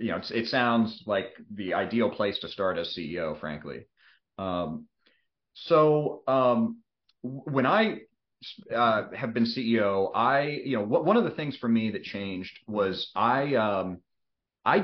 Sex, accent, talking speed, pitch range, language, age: male, American, 150 wpm, 105-125 Hz, English, 30-49